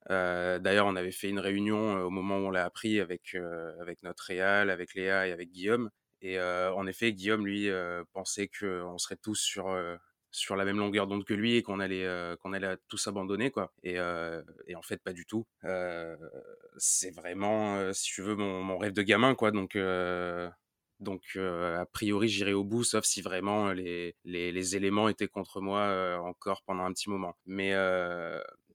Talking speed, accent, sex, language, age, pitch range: 210 wpm, French, male, French, 20-39, 90-105 Hz